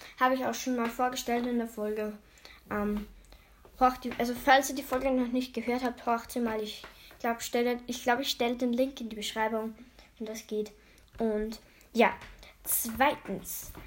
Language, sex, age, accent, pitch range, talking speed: German, female, 10-29, German, 230-280 Hz, 175 wpm